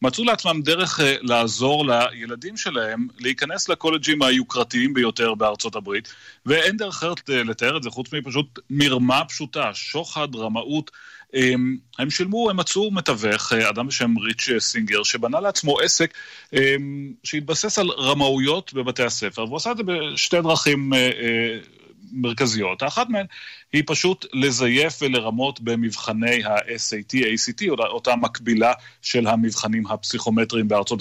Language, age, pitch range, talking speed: Hebrew, 30-49, 115-145 Hz, 120 wpm